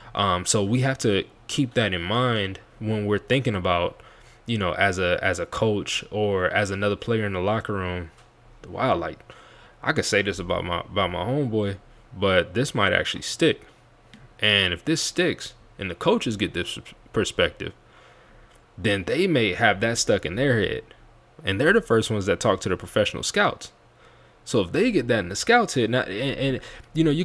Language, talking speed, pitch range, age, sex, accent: English, 195 wpm, 100-120 Hz, 20-39, male, American